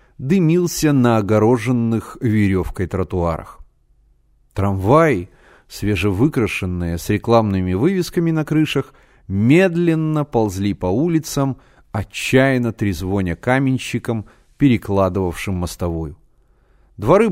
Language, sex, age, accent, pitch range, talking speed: Russian, male, 30-49, native, 95-145 Hz, 75 wpm